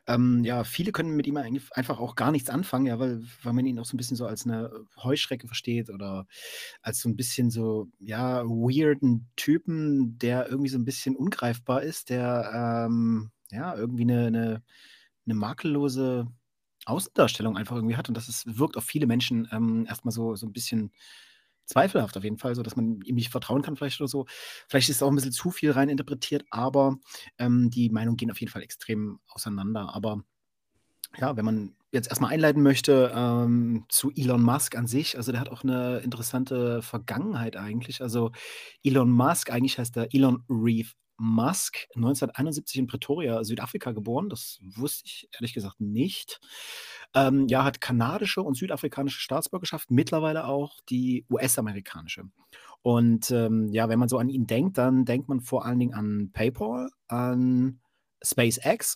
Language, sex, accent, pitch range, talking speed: German, male, German, 115-135 Hz, 175 wpm